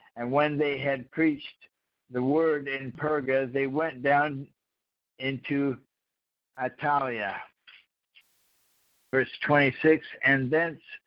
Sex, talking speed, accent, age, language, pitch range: male, 105 wpm, American, 60-79, English, 125-145 Hz